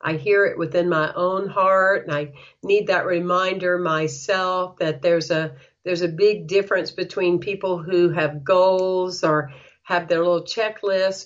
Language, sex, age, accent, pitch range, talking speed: English, female, 50-69, American, 165-205 Hz, 160 wpm